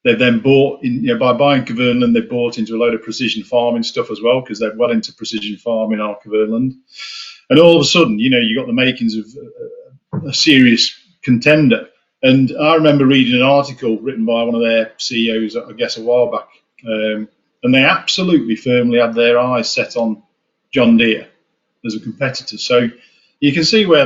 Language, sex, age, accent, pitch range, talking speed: English, male, 40-59, British, 115-160 Hz, 200 wpm